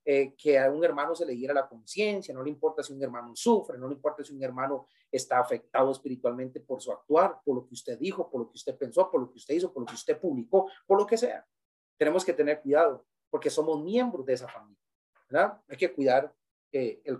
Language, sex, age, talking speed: Spanish, male, 30-49, 235 wpm